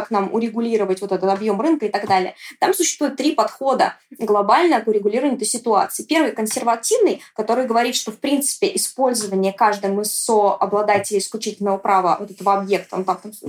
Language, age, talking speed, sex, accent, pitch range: Russian, 20-39, 175 wpm, female, native, 205-255 Hz